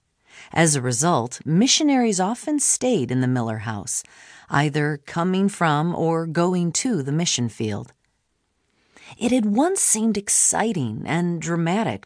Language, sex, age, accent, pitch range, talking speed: English, female, 40-59, American, 135-195 Hz, 130 wpm